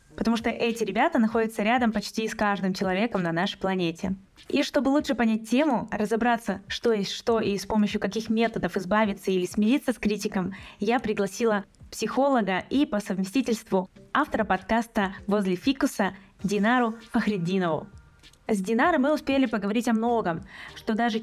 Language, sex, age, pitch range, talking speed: Russian, female, 20-39, 200-240 Hz, 150 wpm